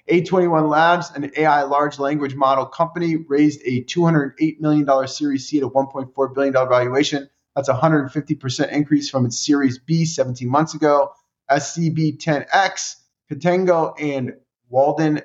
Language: English